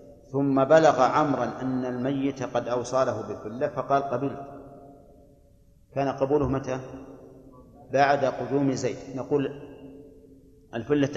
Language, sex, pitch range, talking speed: Arabic, male, 125-140 Hz, 95 wpm